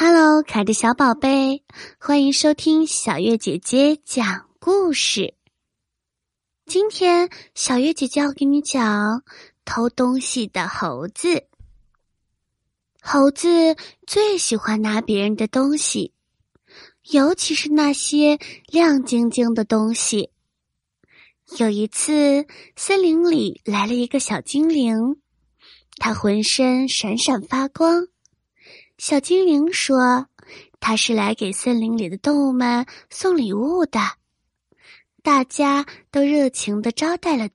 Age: 20-39